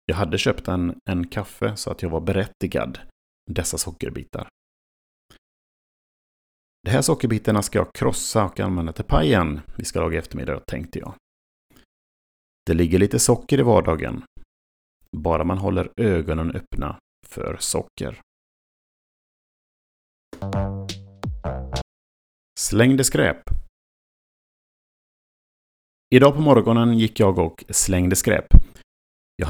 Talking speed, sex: 110 wpm, male